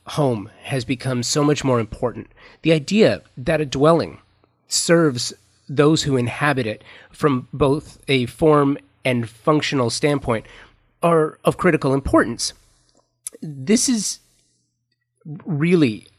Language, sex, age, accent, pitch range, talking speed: English, male, 30-49, American, 115-150 Hz, 115 wpm